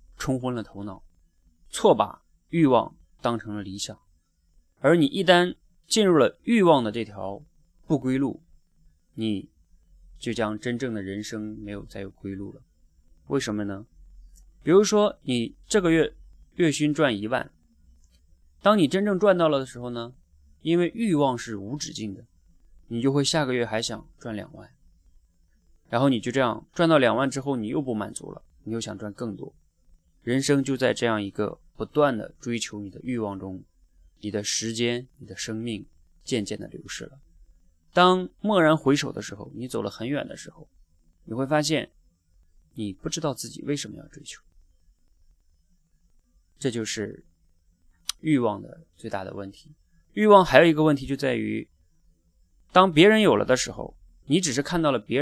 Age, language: 20-39, Chinese